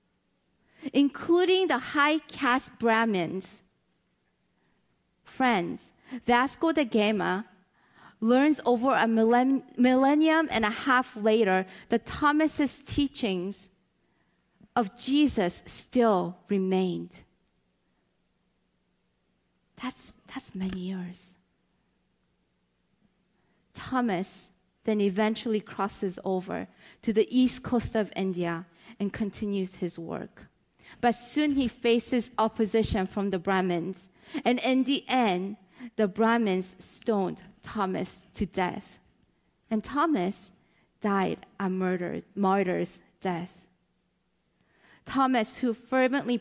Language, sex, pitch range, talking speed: English, female, 190-255 Hz, 90 wpm